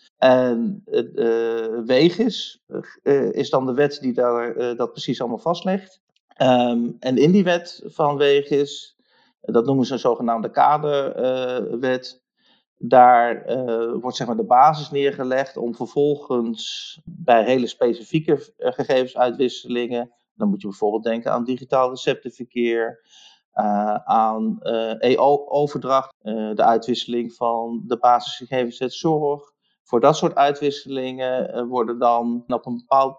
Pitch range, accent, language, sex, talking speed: 120-145 Hz, Dutch, Dutch, male, 130 wpm